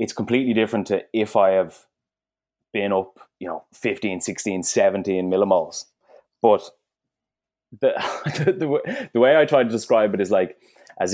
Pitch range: 100-120 Hz